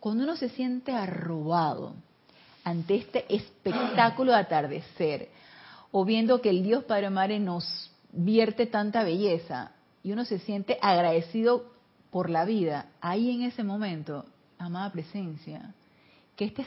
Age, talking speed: 30-49, 135 wpm